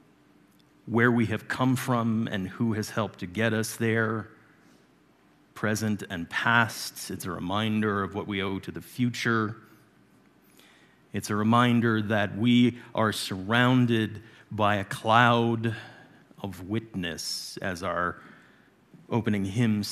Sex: male